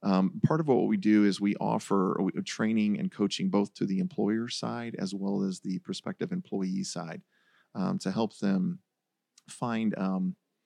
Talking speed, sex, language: 170 wpm, male, English